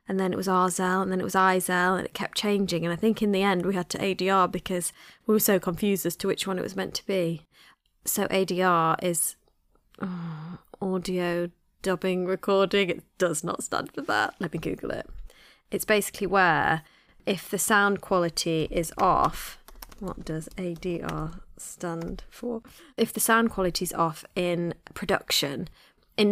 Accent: British